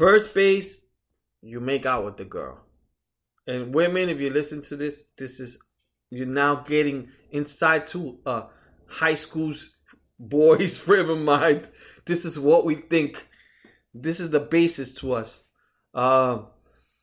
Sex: male